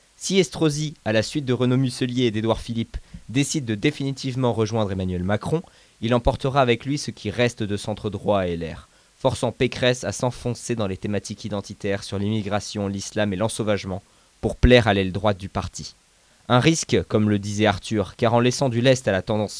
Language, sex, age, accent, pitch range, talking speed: French, male, 20-39, French, 100-120 Hz, 190 wpm